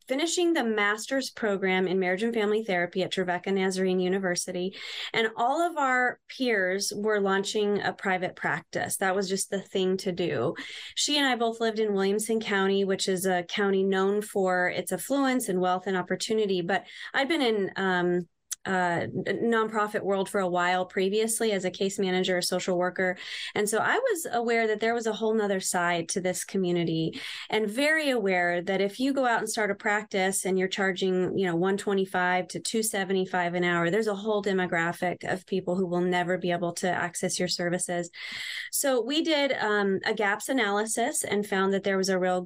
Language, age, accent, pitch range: English, 20-39, American, 185-220 Hz